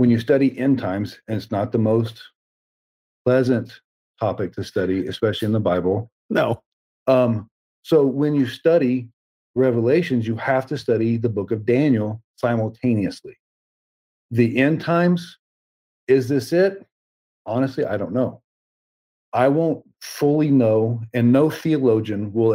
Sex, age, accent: male, 40-59, American